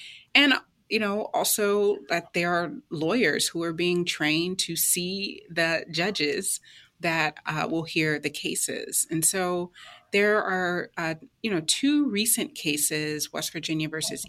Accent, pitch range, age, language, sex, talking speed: American, 160-220 Hz, 30-49, English, female, 145 wpm